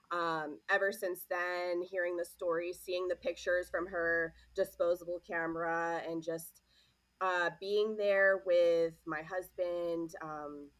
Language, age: English, 20-39